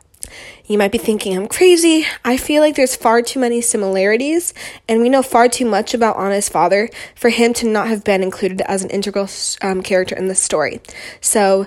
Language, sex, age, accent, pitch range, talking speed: English, female, 20-39, American, 195-235 Hz, 200 wpm